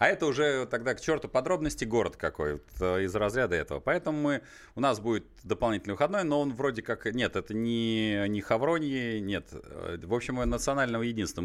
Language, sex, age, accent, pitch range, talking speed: Russian, male, 30-49, native, 90-125 Hz, 180 wpm